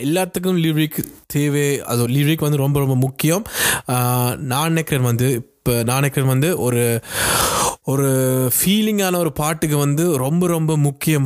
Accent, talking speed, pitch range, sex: native, 125 wpm, 125-150 Hz, male